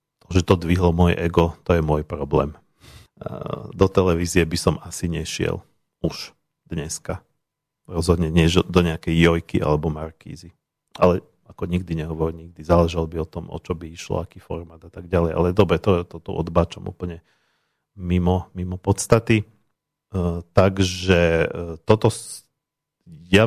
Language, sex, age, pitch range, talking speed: Slovak, male, 40-59, 90-105 Hz, 140 wpm